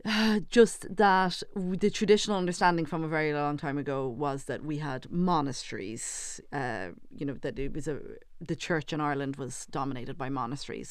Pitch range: 135-165 Hz